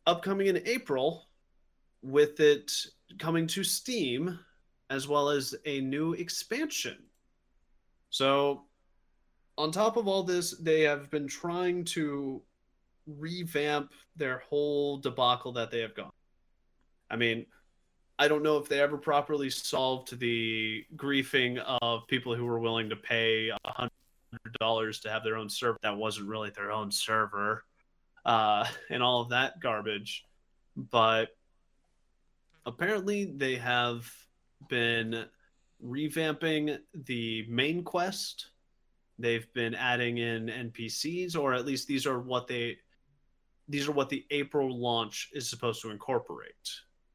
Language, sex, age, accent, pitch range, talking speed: English, male, 30-49, American, 110-145 Hz, 130 wpm